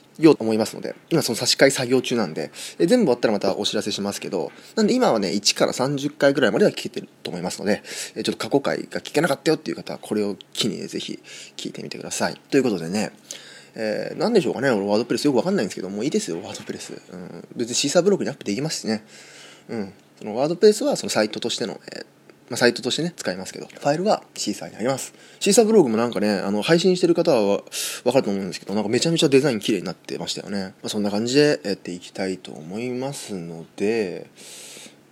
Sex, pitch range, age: male, 105-145 Hz, 20-39